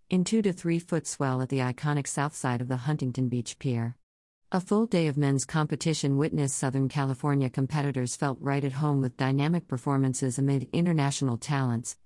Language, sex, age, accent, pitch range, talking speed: English, female, 50-69, American, 130-155 Hz, 175 wpm